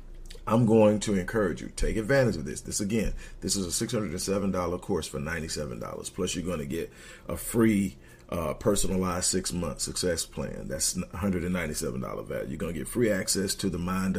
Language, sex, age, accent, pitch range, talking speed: English, male, 40-59, American, 85-100 Hz, 180 wpm